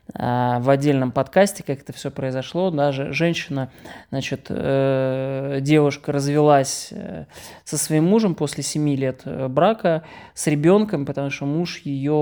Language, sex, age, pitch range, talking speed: Russian, male, 20-39, 130-150 Hz, 125 wpm